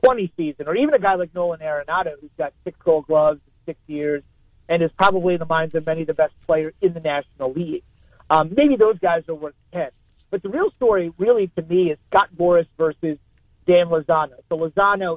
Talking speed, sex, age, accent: 215 wpm, male, 40-59, American